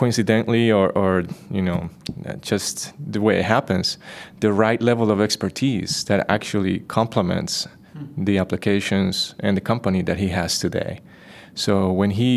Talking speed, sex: 145 wpm, male